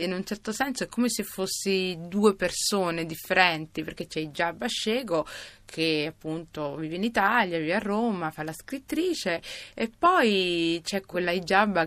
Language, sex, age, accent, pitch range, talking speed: Italian, female, 20-39, native, 165-195 Hz, 150 wpm